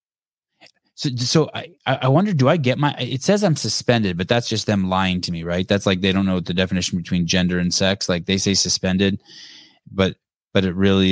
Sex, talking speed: male, 220 wpm